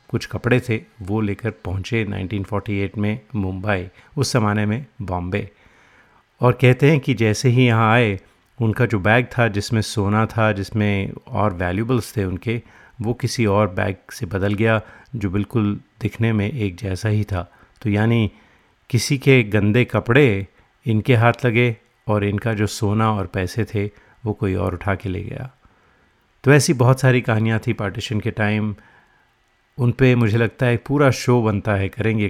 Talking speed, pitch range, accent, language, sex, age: 165 wpm, 100-120 Hz, native, Hindi, male, 30-49